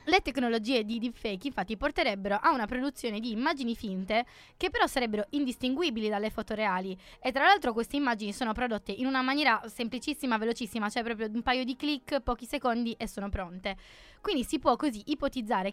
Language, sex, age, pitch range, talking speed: Italian, female, 20-39, 215-265 Hz, 180 wpm